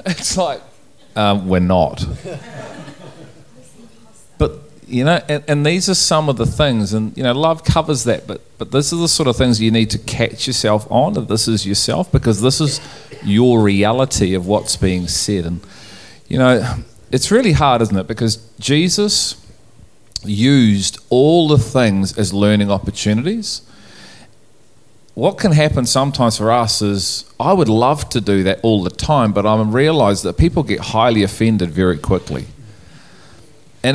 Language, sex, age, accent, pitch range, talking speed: English, male, 40-59, Australian, 105-135 Hz, 165 wpm